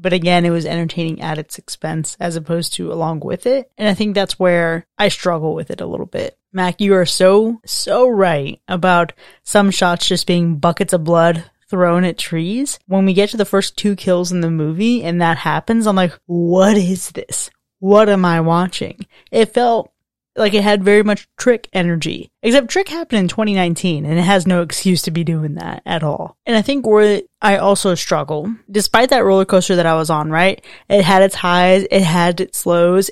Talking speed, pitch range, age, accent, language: 210 wpm, 170-210 Hz, 20-39, American, English